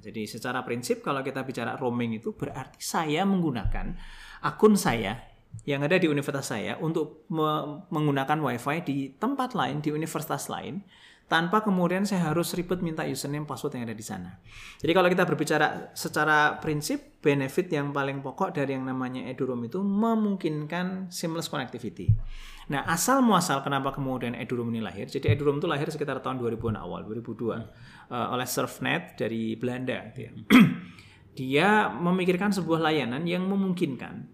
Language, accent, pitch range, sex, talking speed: Indonesian, native, 125-170 Hz, male, 150 wpm